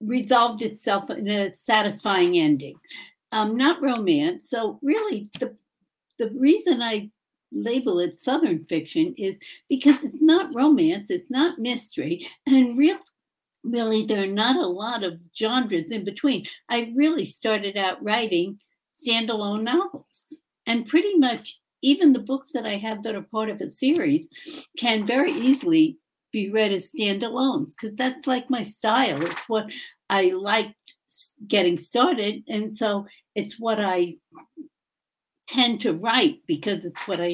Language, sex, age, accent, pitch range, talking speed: English, female, 60-79, American, 210-295 Hz, 145 wpm